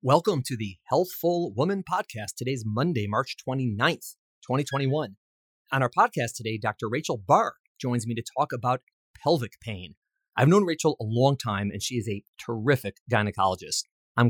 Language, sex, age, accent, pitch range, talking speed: English, male, 30-49, American, 110-145 Hz, 160 wpm